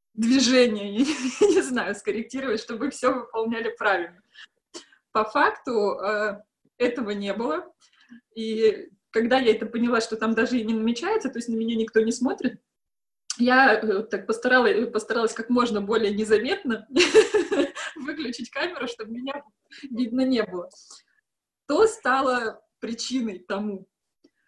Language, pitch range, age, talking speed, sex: Russian, 220-280 Hz, 20-39, 125 wpm, female